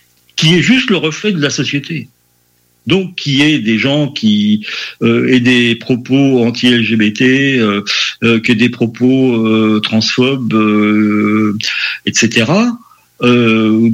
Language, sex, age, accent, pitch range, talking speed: French, male, 50-69, French, 110-155 Hz, 125 wpm